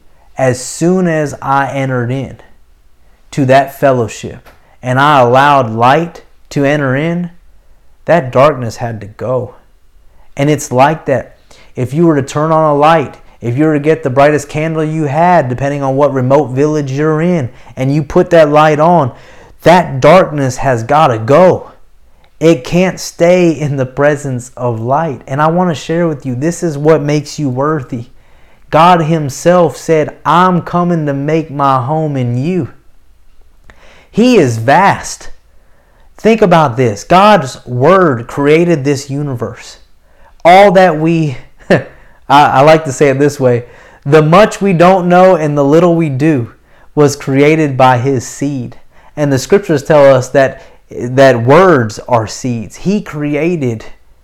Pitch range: 125-160 Hz